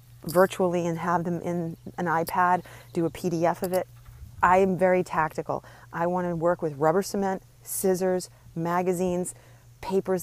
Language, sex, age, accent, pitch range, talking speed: English, female, 40-59, American, 165-195 Hz, 155 wpm